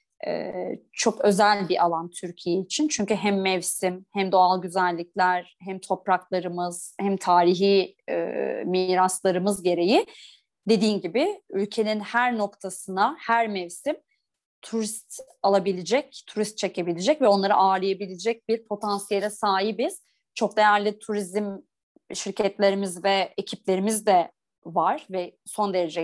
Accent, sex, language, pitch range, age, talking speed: native, female, Turkish, 185-235 Hz, 30-49, 105 wpm